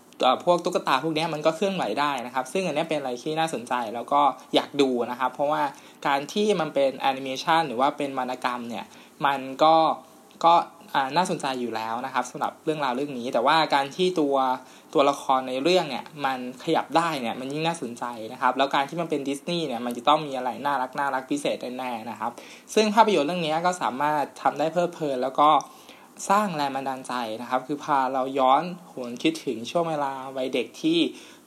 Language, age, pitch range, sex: Thai, 20-39, 130-165 Hz, male